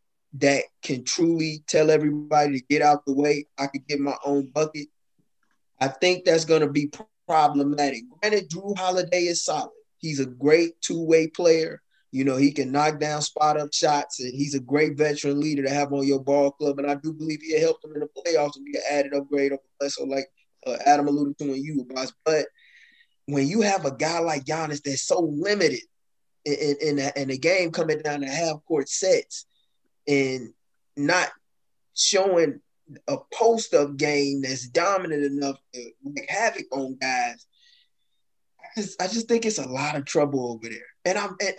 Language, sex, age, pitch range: English, male, 20-39, 140-180 Hz